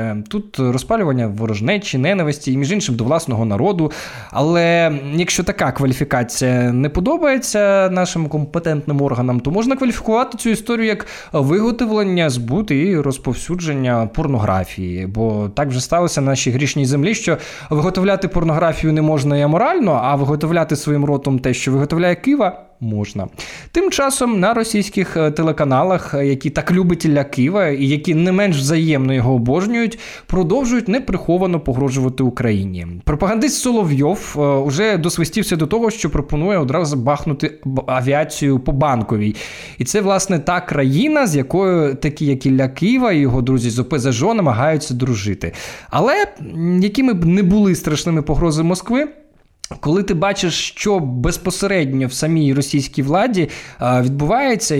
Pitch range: 135-190 Hz